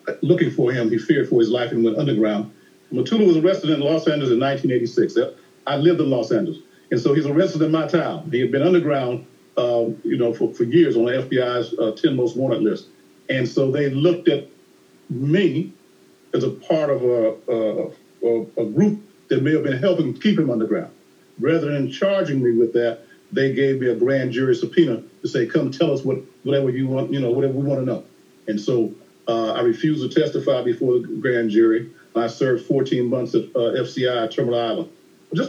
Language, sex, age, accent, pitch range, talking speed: English, male, 50-69, American, 125-170 Hz, 205 wpm